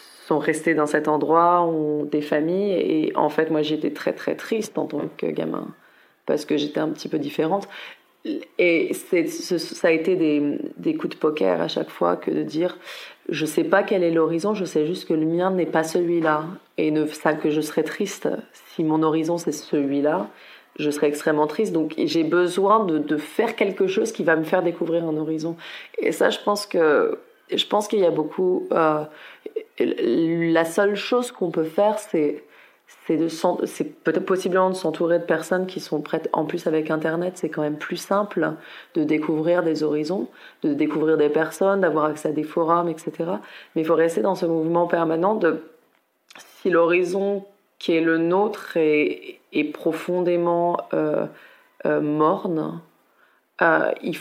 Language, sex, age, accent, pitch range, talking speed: French, female, 30-49, French, 155-195 Hz, 185 wpm